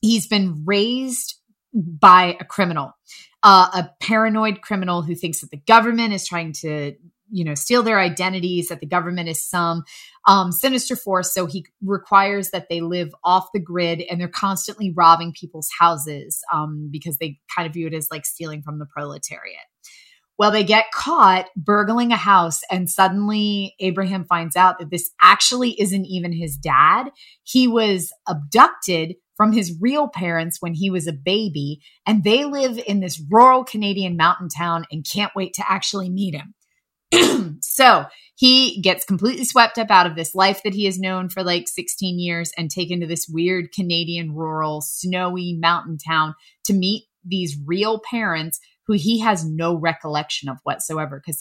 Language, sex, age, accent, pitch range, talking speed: English, female, 20-39, American, 165-205 Hz, 170 wpm